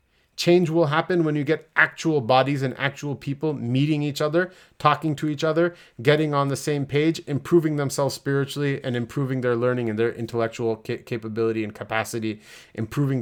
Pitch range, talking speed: 120-150 Hz, 170 wpm